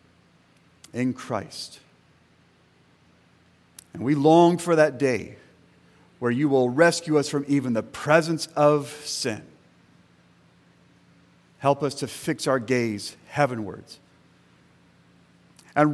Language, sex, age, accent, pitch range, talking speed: English, male, 50-69, American, 120-155 Hz, 100 wpm